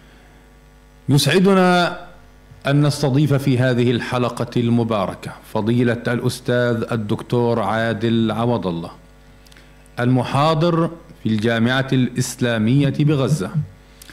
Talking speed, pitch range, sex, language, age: 75 wpm, 120-155 Hz, male, Arabic, 40-59